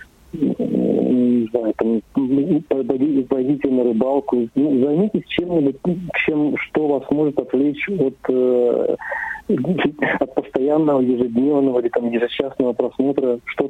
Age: 40-59